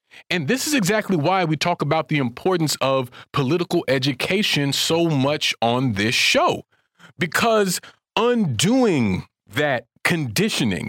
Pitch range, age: 130-185 Hz, 40-59